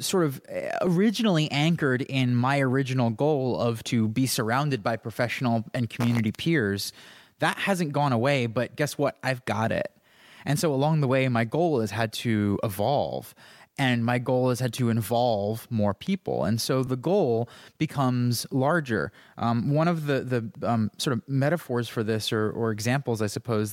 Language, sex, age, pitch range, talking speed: English, male, 20-39, 110-140 Hz, 170 wpm